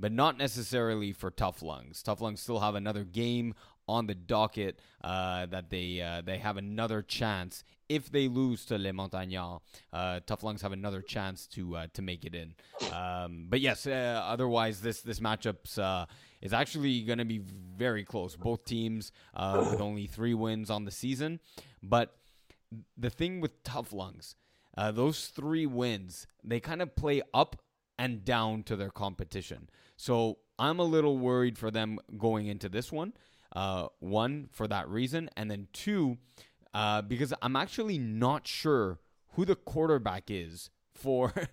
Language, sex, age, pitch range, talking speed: English, male, 20-39, 100-130 Hz, 170 wpm